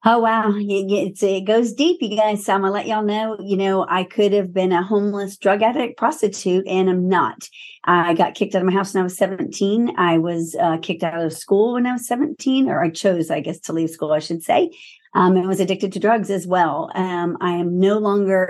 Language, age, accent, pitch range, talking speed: English, 40-59, American, 180-205 Hz, 240 wpm